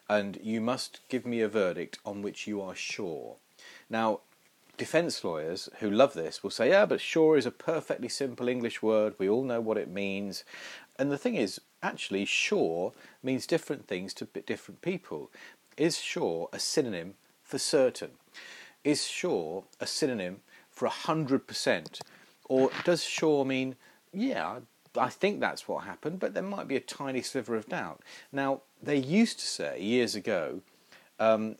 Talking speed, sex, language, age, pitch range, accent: 165 wpm, male, English, 40-59, 115-150 Hz, British